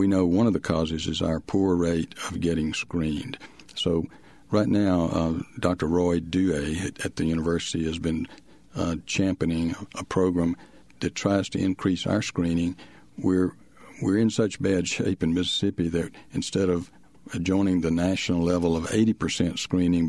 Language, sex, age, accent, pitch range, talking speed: English, male, 60-79, American, 85-95 Hz, 165 wpm